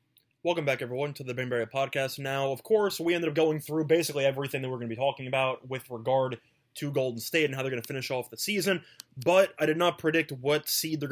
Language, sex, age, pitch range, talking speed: English, male, 20-39, 130-160 Hz, 250 wpm